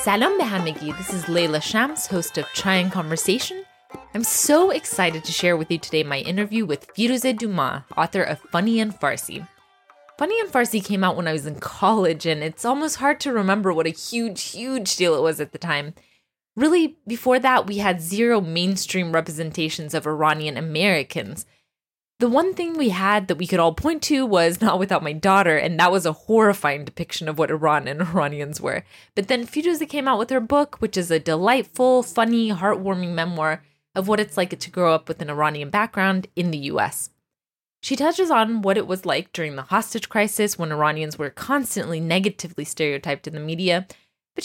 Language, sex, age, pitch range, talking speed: English, female, 20-39, 160-230 Hz, 195 wpm